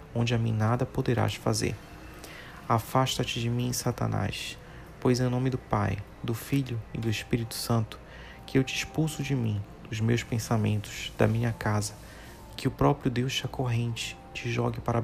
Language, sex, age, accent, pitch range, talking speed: Portuguese, male, 30-49, Brazilian, 110-125 Hz, 170 wpm